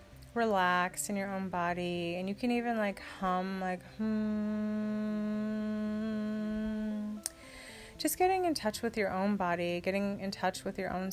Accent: American